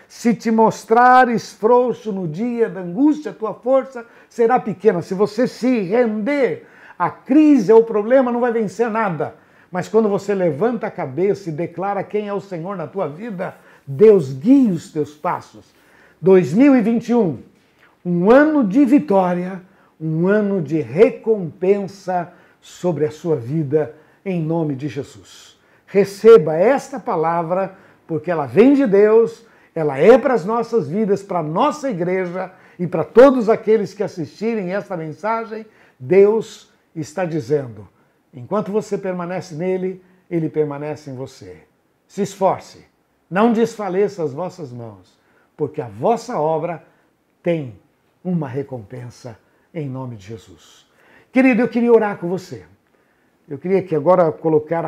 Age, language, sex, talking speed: 60-79, Portuguese, male, 140 wpm